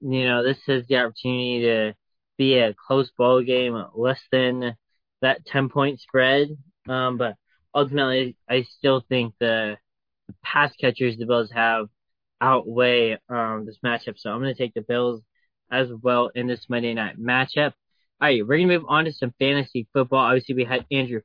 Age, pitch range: 20-39, 115-135 Hz